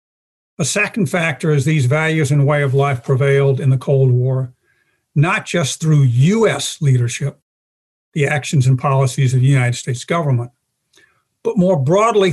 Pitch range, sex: 135-160 Hz, male